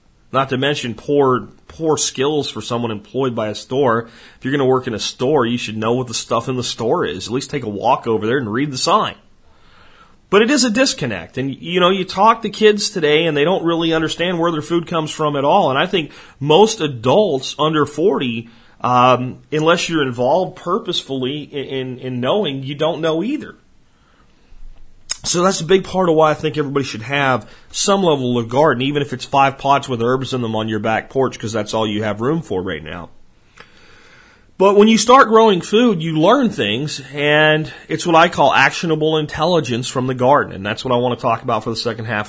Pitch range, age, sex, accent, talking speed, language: 120-165 Hz, 40-59, male, American, 220 wpm, English